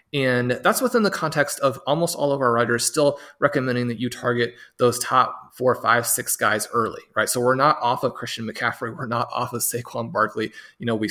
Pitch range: 120-140 Hz